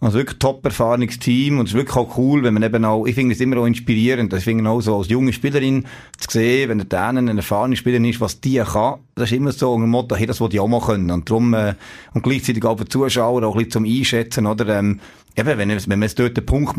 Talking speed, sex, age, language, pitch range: 265 wpm, male, 30-49, German, 105-125 Hz